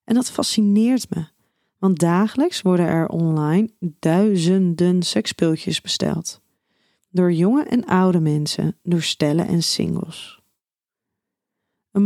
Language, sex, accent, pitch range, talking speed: Dutch, female, Dutch, 170-210 Hz, 110 wpm